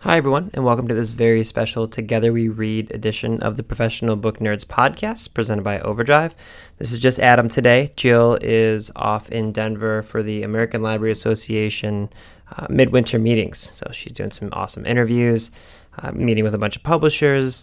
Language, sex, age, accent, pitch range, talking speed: English, male, 20-39, American, 110-120 Hz, 175 wpm